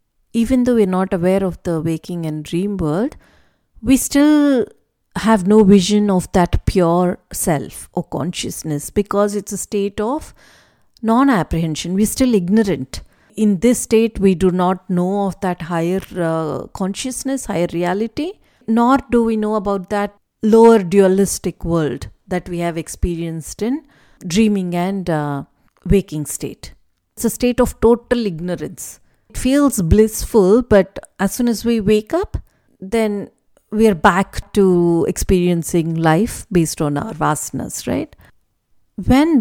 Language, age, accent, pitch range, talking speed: English, 50-69, Indian, 170-220 Hz, 145 wpm